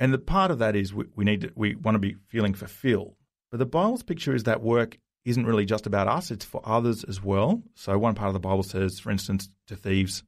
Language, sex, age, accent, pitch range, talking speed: English, male, 30-49, Australian, 95-120 Hz, 250 wpm